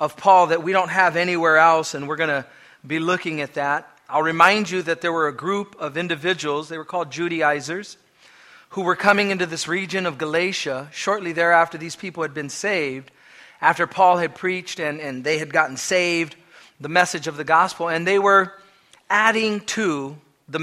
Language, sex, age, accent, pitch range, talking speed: English, male, 40-59, American, 160-195 Hz, 190 wpm